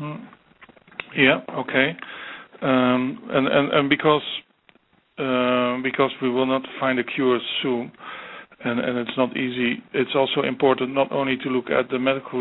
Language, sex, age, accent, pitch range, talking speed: English, male, 50-69, Dutch, 125-135 Hz, 150 wpm